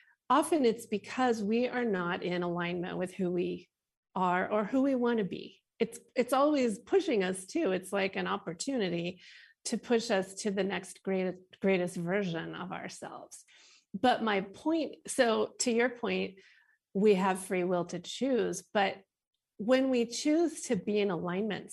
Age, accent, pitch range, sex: 40-59, American, 190-250 Hz, female